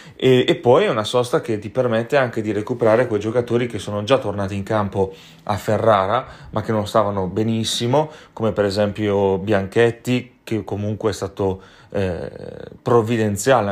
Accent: native